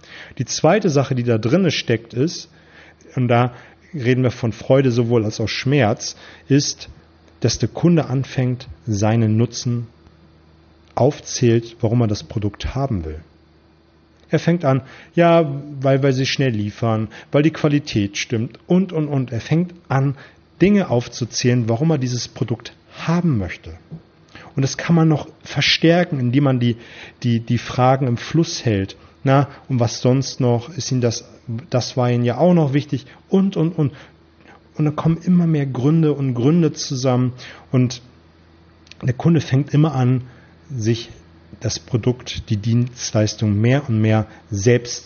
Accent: German